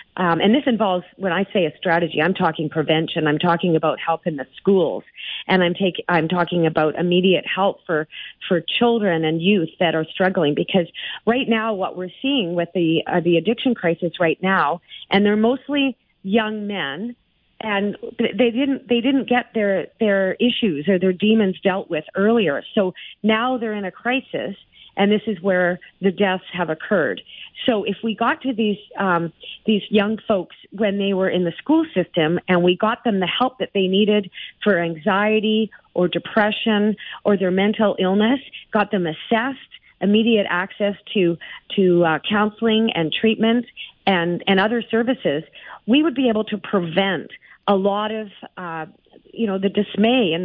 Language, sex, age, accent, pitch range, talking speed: English, female, 40-59, American, 175-220 Hz, 175 wpm